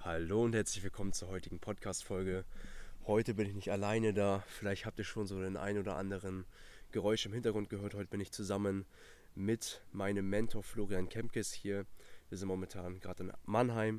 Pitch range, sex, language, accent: 95-110 Hz, male, German, German